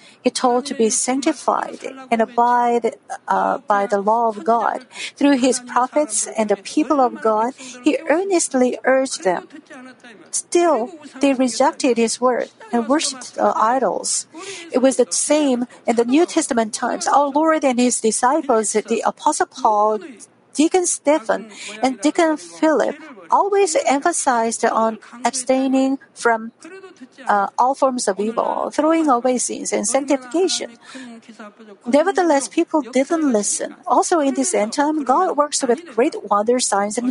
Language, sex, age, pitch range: Korean, female, 50-69, 230-295 Hz